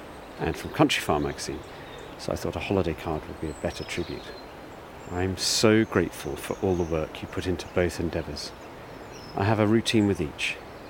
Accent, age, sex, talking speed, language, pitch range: British, 40-59, male, 185 wpm, English, 85-105 Hz